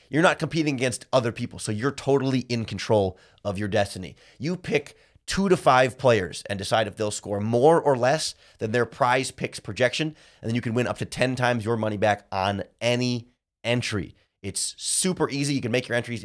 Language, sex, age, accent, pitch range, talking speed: English, male, 30-49, American, 105-140 Hz, 205 wpm